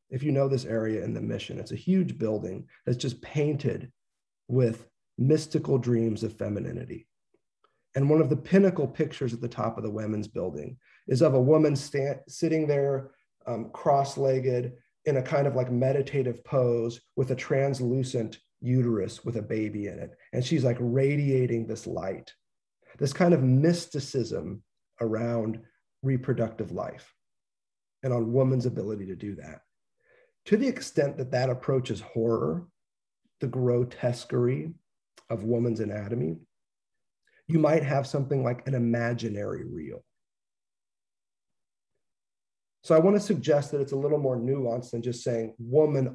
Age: 40-59